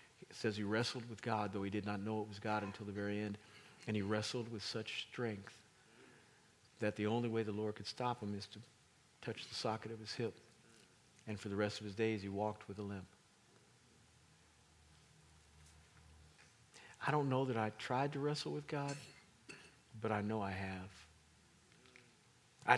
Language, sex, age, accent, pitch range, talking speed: English, male, 50-69, American, 105-140 Hz, 180 wpm